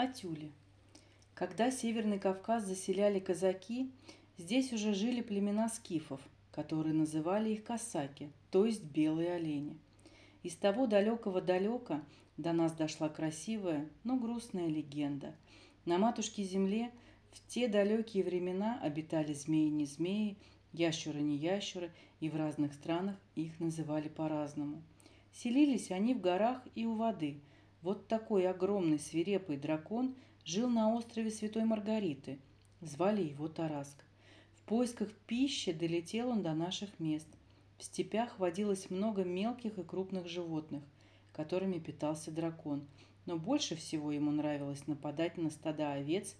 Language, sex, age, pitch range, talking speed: Russian, female, 40-59, 150-205 Hz, 120 wpm